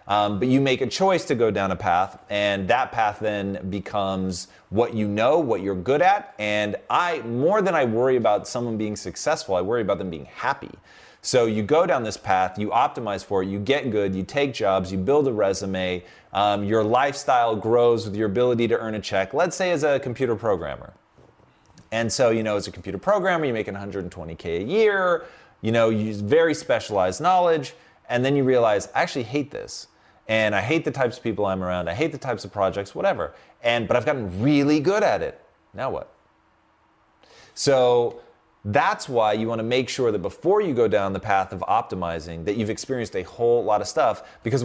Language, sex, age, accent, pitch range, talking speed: English, male, 30-49, American, 95-130 Hz, 210 wpm